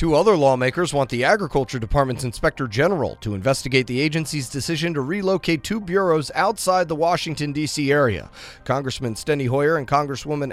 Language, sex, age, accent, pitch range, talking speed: English, male, 30-49, American, 125-165 Hz, 160 wpm